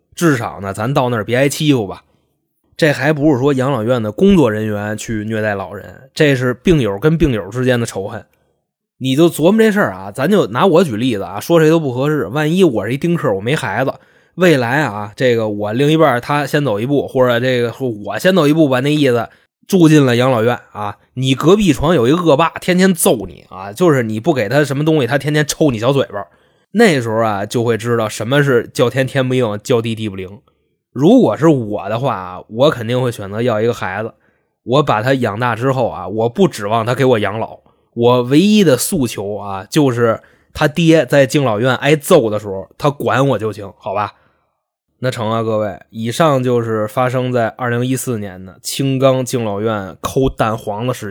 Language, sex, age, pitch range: Chinese, male, 20-39, 110-145 Hz